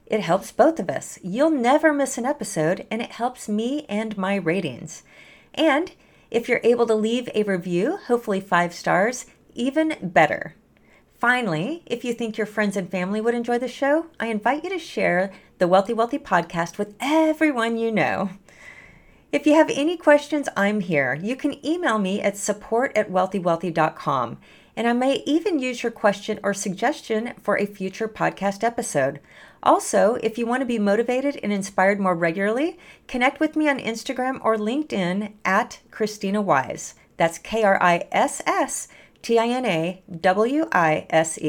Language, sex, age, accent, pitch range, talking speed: English, female, 40-59, American, 190-255 Hz, 150 wpm